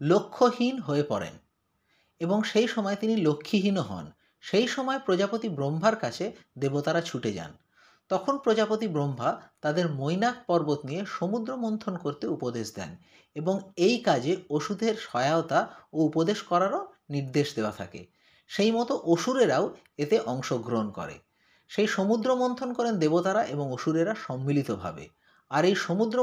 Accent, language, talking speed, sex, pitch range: native, Bengali, 135 wpm, male, 145-220 Hz